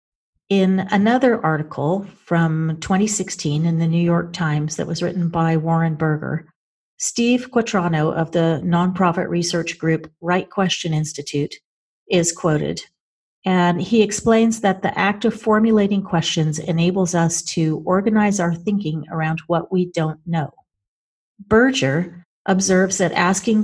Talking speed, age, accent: 130 wpm, 40-59, American